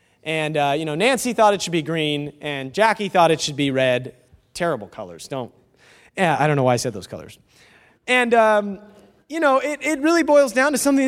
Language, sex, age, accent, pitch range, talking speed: English, male, 30-49, American, 140-220 Hz, 215 wpm